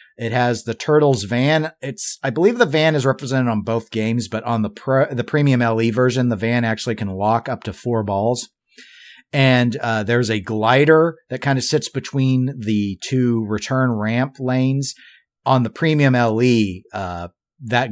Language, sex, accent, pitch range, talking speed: English, male, American, 105-125 Hz, 175 wpm